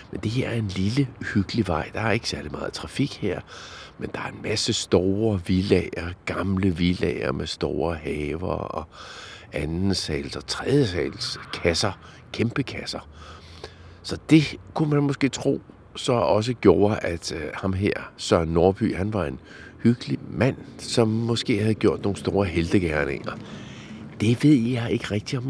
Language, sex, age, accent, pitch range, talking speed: Danish, male, 50-69, native, 85-120 Hz, 155 wpm